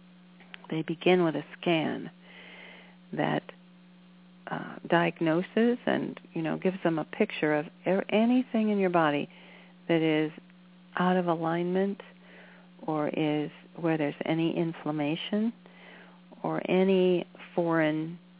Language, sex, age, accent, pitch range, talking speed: English, female, 50-69, American, 160-180 Hz, 110 wpm